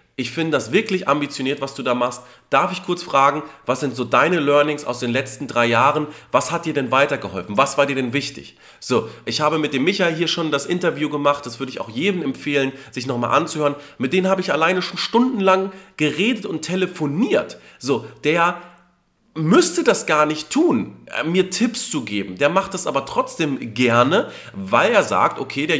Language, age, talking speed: German, 40-59, 200 wpm